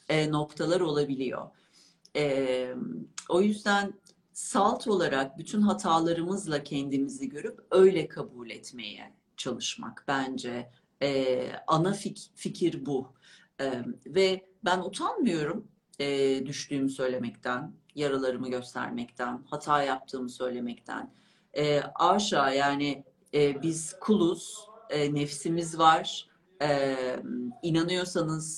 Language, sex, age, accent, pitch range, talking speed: Turkish, female, 40-59, native, 135-180 Hz, 90 wpm